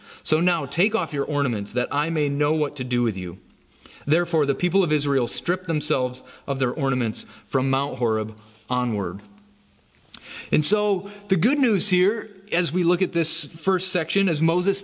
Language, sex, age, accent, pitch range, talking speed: English, male, 30-49, American, 135-185 Hz, 180 wpm